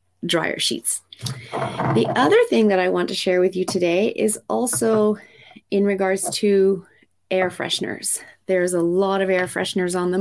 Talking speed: 165 wpm